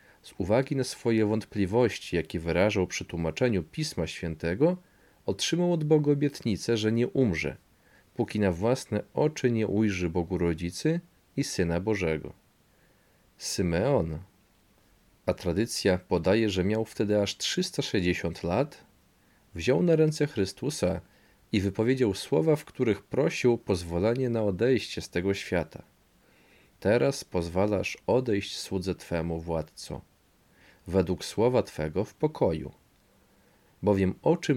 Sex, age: male, 40-59